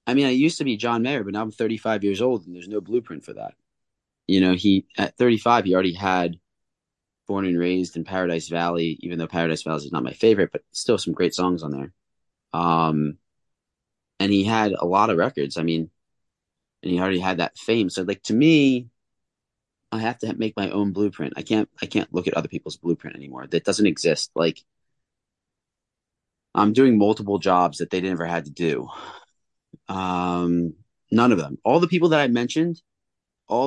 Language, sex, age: English, male, 30-49